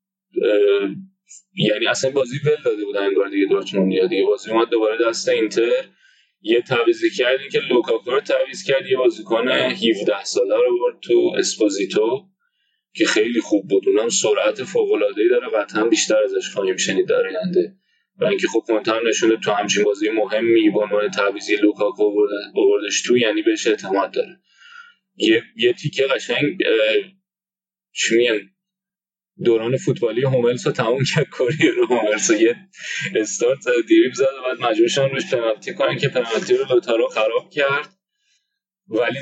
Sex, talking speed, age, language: male, 145 wpm, 20-39, Persian